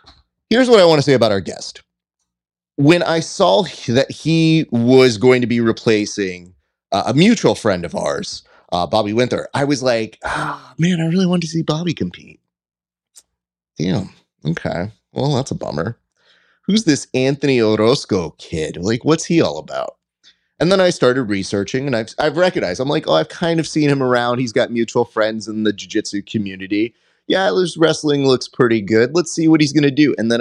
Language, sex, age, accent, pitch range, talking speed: English, male, 30-49, American, 100-145 Hz, 190 wpm